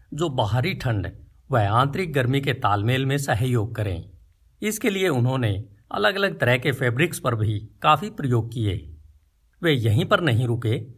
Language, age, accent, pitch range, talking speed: Hindi, 50-69, native, 110-150 Hz, 160 wpm